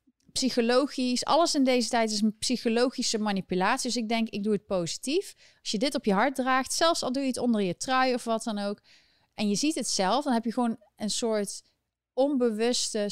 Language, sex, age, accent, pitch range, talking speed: Dutch, female, 30-49, Dutch, 185-245 Hz, 215 wpm